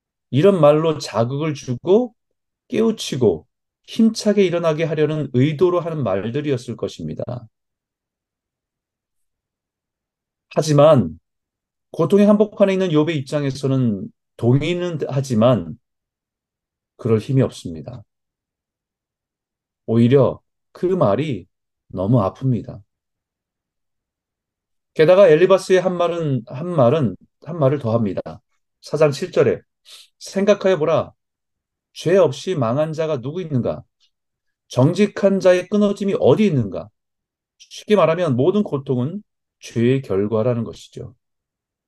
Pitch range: 120-175 Hz